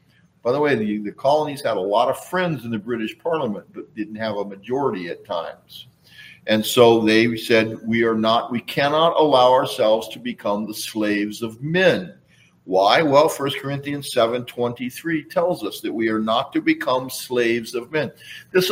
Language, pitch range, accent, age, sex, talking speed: English, 115-170 Hz, American, 50-69, male, 185 wpm